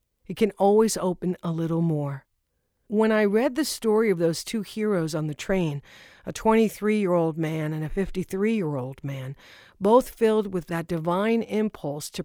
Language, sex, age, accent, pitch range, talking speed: English, female, 50-69, American, 170-220 Hz, 160 wpm